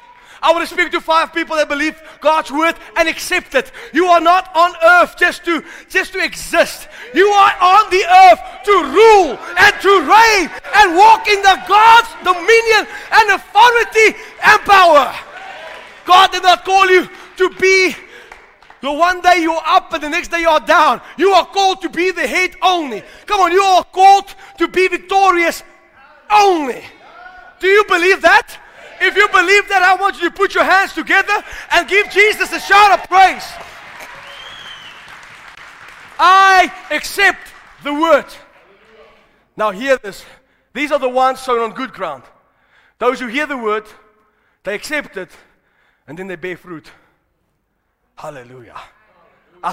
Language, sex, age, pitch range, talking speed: English, male, 30-49, 285-385 Hz, 160 wpm